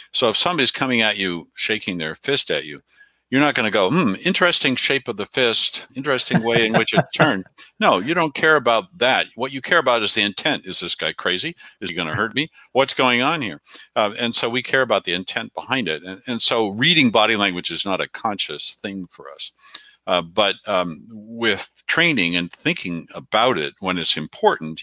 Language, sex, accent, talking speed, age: English, male, American, 220 wpm, 60-79